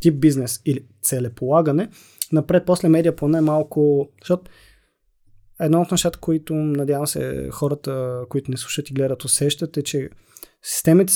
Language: Bulgarian